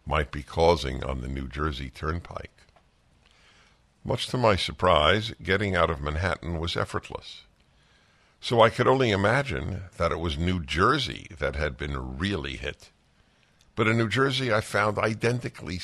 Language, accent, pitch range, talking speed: English, American, 80-120 Hz, 150 wpm